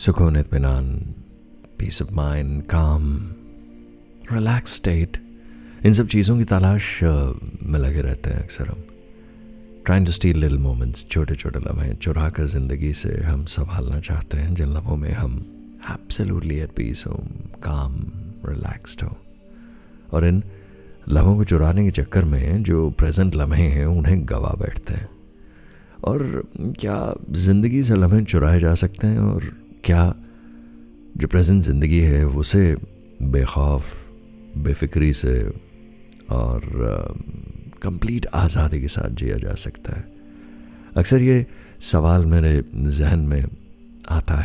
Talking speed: 130 wpm